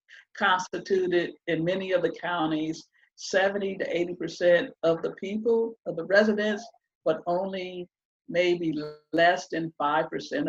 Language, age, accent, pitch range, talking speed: English, 50-69, American, 160-260 Hz, 130 wpm